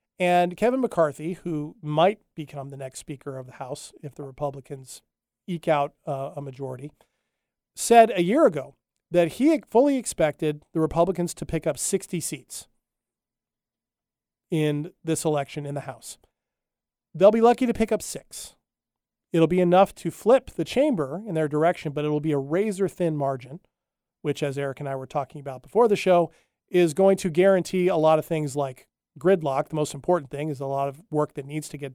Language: English